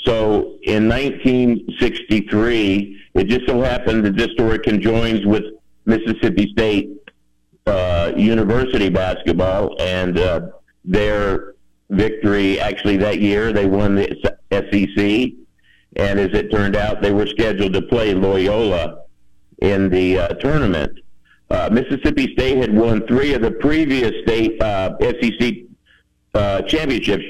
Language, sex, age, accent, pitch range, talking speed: English, male, 50-69, American, 95-115 Hz, 125 wpm